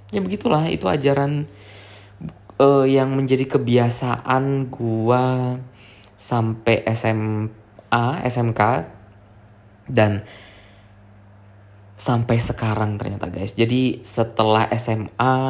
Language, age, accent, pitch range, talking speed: Indonesian, 20-39, native, 105-125 Hz, 75 wpm